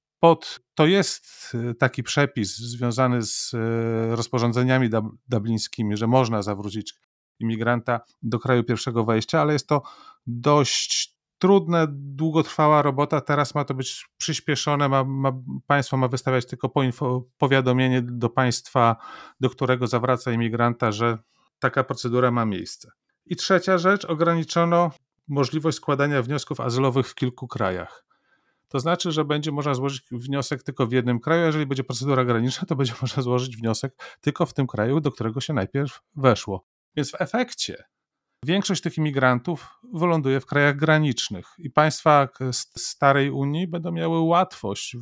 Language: Polish